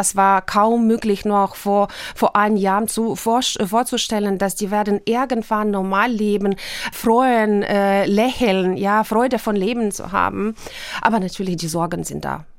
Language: German